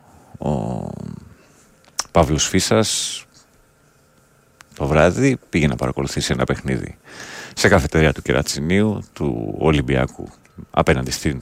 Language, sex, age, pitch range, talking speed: Greek, male, 40-59, 70-85 Hz, 95 wpm